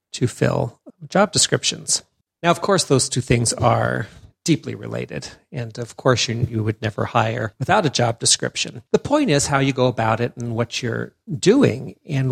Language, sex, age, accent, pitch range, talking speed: English, male, 50-69, American, 115-145 Hz, 185 wpm